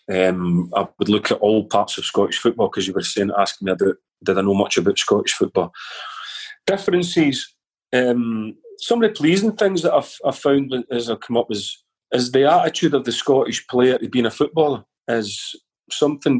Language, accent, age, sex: English, British, 30-49, male